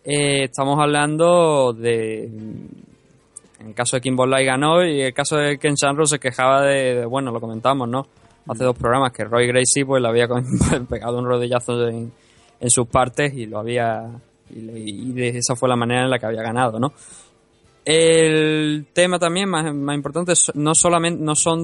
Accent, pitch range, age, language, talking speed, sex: Spanish, 120-150 Hz, 20-39, Spanish, 185 wpm, male